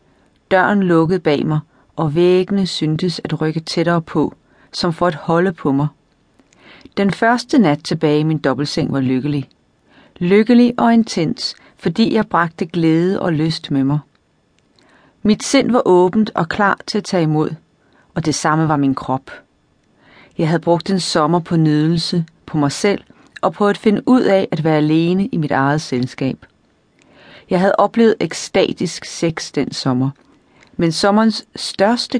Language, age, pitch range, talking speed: English, 40-59, 155-200 Hz, 160 wpm